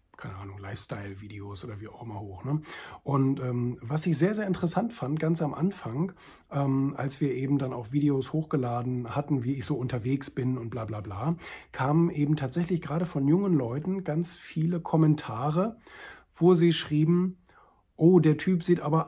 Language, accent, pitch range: German, German, 125-165 Hz